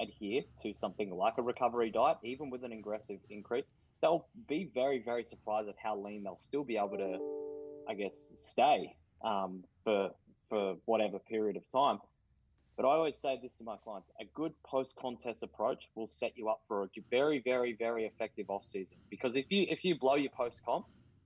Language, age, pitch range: English, 20-39, 105-130 Hz